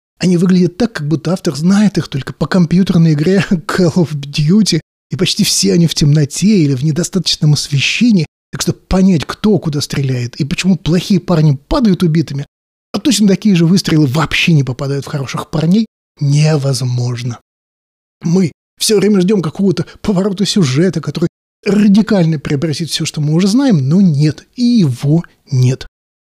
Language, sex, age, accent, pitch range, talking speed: Russian, male, 20-39, native, 145-180 Hz, 155 wpm